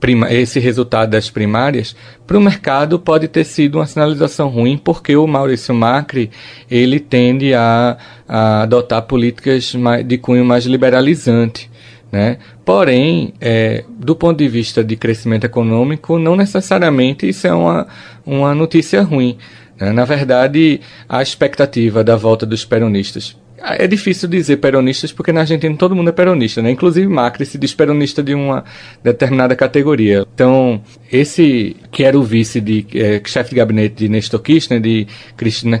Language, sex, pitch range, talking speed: Portuguese, male, 115-145 Hz, 155 wpm